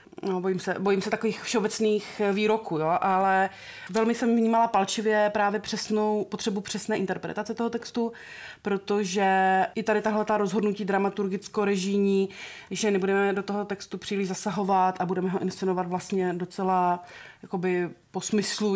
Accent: native